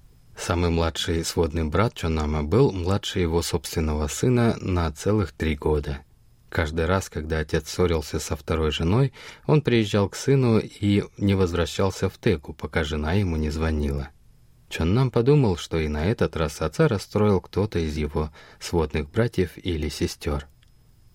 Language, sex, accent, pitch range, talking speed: Russian, male, native, 80-105 Hz, 150 wpm